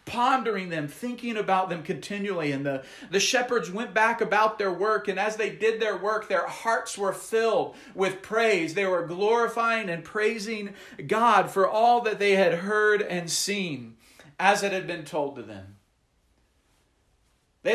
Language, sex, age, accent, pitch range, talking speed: English, male, 40-59, American, 145-210 Hz, 165 wpm